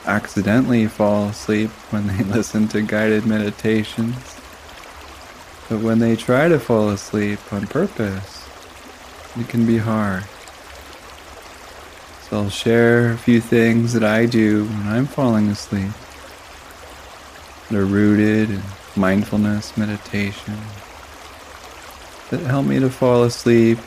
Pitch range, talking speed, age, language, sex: 95-110 Hz, 120 wpm, 20-39, English, male